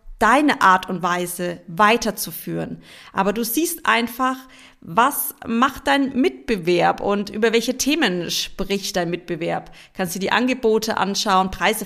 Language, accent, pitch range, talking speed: German, German, 205-255 Hz, 130 wpm